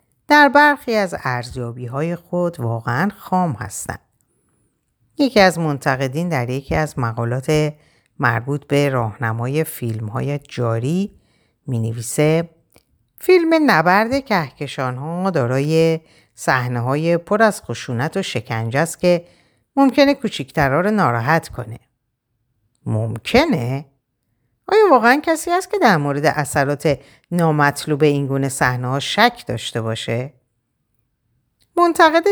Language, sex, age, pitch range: Persian, female, 50-69, 125-185 Hz